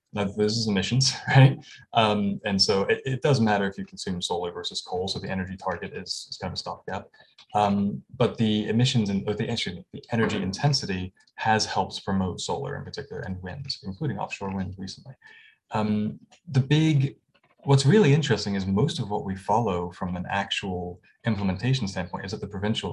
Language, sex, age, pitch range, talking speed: English, male, 20-39, 95-130 Hz, 190 wpm